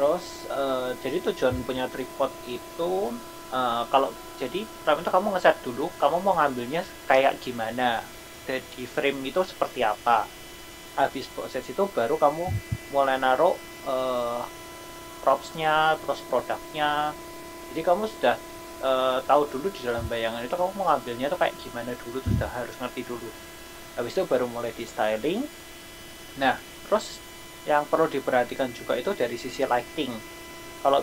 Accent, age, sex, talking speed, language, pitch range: native, 30-49, male, 145 wpm, Indonesian, 125-195 Hz